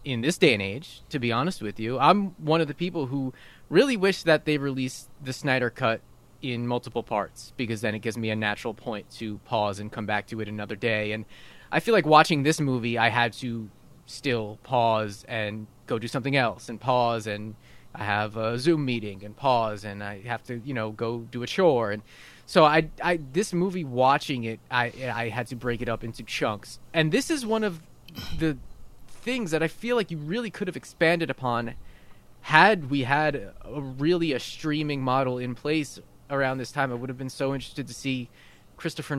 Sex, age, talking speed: male, 20-39, 210 wpm